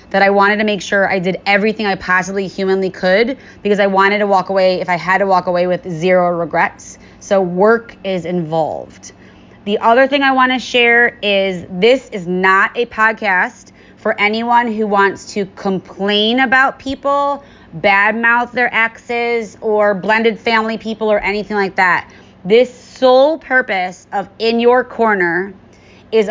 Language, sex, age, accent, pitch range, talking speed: English, female, 30-49, American, 185-225 Hz, 165 wpm